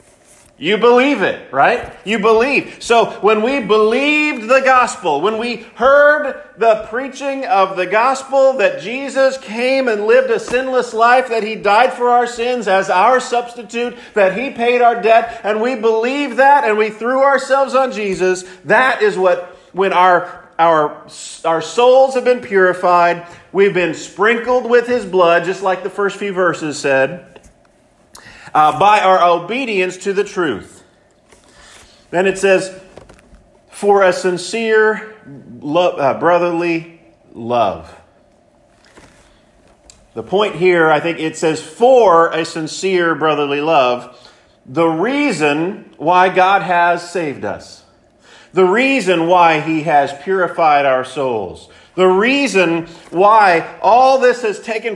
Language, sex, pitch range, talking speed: English, male, 175-245 Hz, 140 wpm